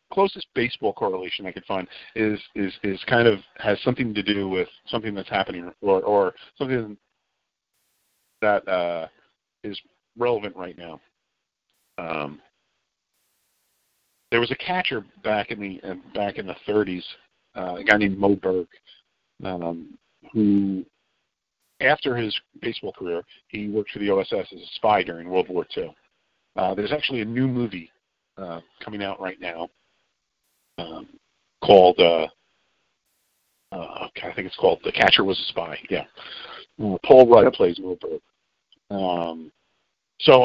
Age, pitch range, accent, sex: 40-59, 90-115 Hz, American, male